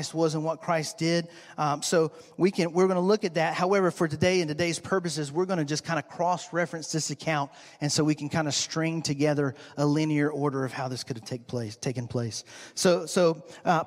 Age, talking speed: 40-59, 235 wpm